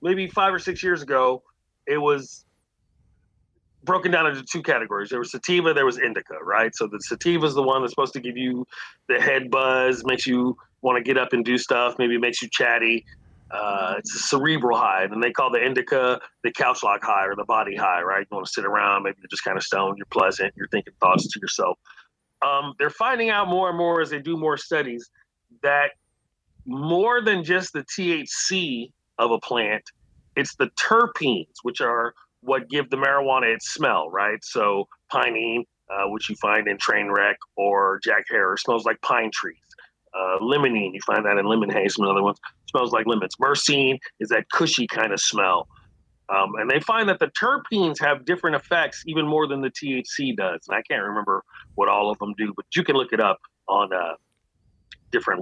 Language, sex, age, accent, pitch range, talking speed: English, male, 40-59, American, 120-165 Hz, 205 wpm